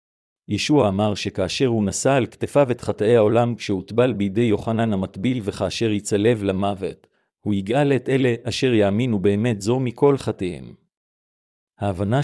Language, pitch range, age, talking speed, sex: Hebrew, 100-125 Hz, 50-69, 135 wpm, male